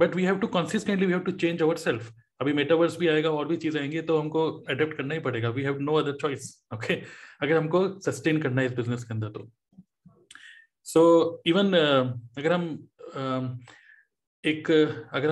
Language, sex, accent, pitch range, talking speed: Hindi, male, native, 140-180 Hz, 180 wpm